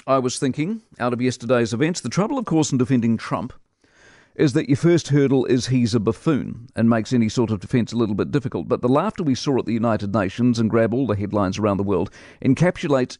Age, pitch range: 50-69, 115-140 Hz